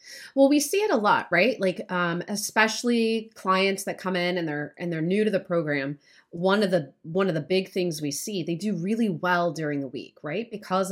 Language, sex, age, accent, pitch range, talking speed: English, female, 30-49, American, 180-260 Hz, 225 wpm